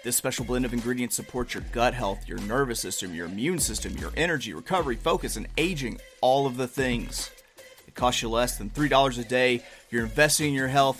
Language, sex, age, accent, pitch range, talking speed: English, male, 30-49, American, 120-135 Hz, 205 wpm